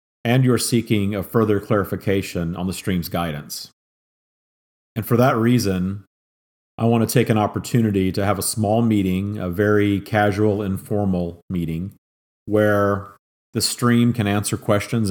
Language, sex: English, male